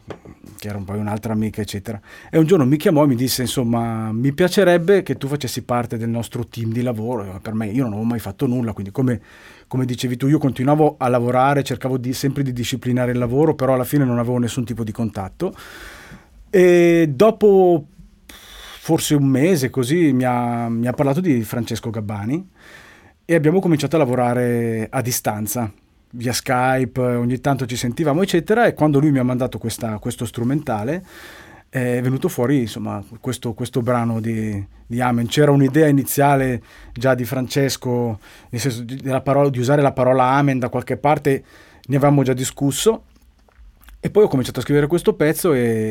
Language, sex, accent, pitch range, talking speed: Italian, male, native, 115-140 Hz, 175 wpm